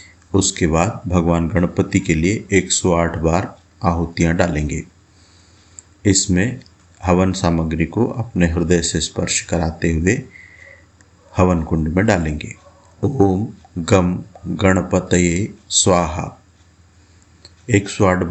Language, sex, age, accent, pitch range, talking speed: Hindi, male, 50-69, native, 85-95 Hz, 100 wpm